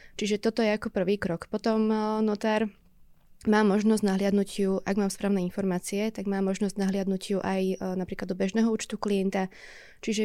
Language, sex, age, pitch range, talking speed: Slovak, female, 20-39, 190-215 Hz, 165 wpm